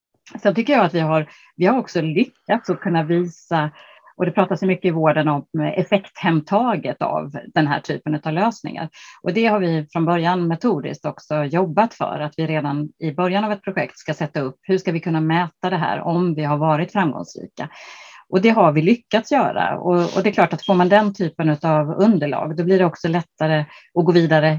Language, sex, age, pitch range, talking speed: Swedish, female, 30-49, 155-195 Hz, 210 wpm